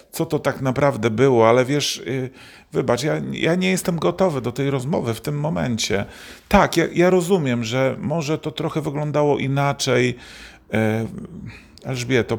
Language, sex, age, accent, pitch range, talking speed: Polish, male, 40-59, native, 110-160 Hz, 145 wpm